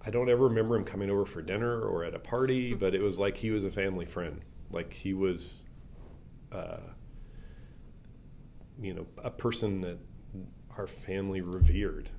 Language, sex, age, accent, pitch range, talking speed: English, male, 30-49, American, 90-105 Hz, 165 wpm